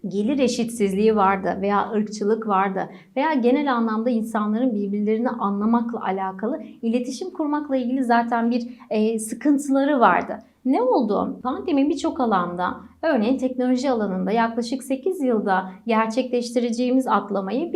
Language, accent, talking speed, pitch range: Turkish, native, 115 wpm, 215-260 Hz